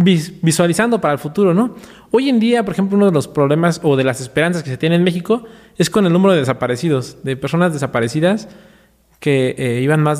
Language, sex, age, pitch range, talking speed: Spanish, male, 20-39, 145-200 Hz, 210 wpm